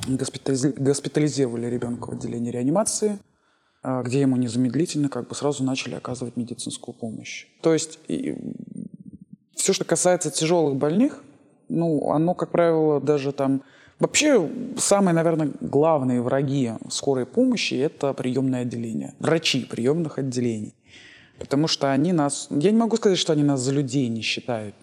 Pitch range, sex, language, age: 130-165 Hz, male, Russian, 20-39